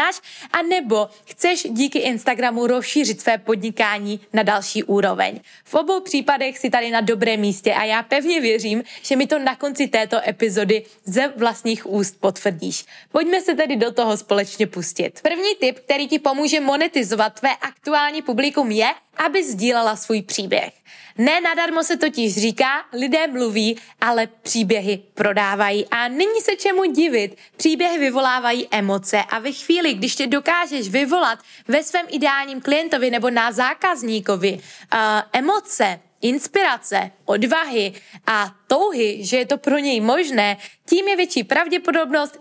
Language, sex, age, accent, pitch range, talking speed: Czech, female, 20-39, native, 220-305 Hz, 145 wpm